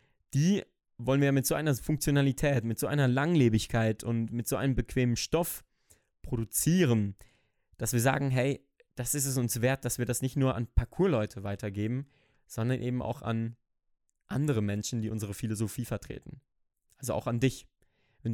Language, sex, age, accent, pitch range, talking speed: German, male, 20-39, German, 115-135 Hz, 165 wpm